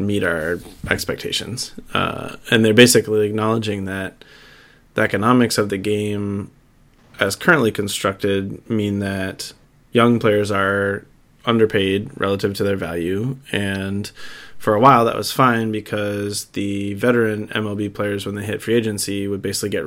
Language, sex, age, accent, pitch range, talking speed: English, male, 20-39, American, 100-120 Hz, 140 wpm